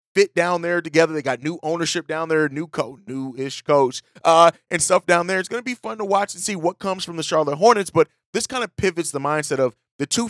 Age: 30-49